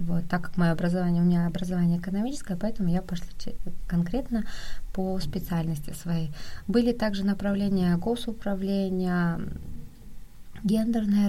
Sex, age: female, 20-39